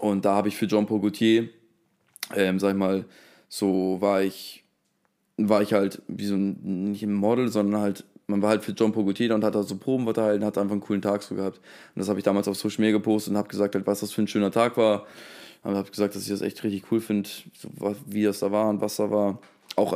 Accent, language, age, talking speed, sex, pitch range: German, German, 20-39, 255 wpm, male, 100-110 Hz